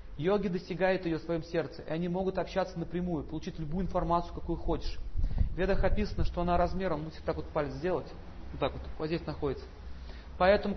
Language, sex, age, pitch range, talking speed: Russian, male, 40-59, 160-200 Hz, 190 wpm